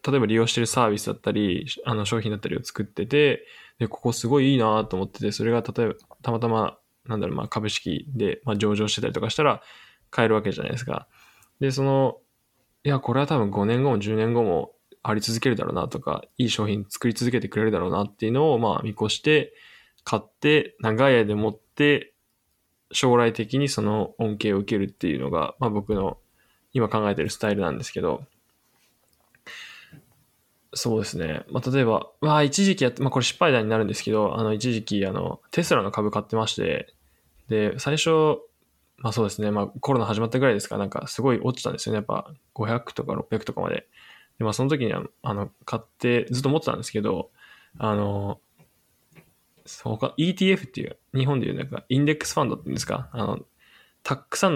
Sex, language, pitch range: male, Japanese, 105-135 Hz